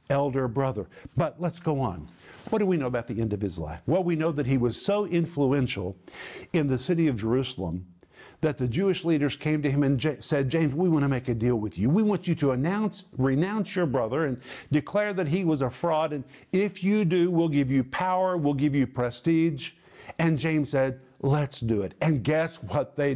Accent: American